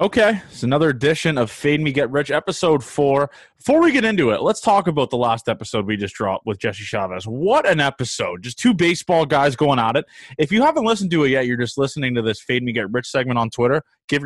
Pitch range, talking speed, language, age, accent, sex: 125-175 Hz, 245 wpm, English, 20-39, American, male